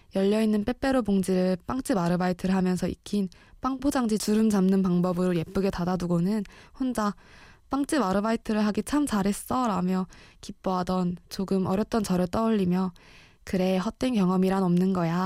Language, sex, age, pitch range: Korean, female, 20-39, 185-220 Hz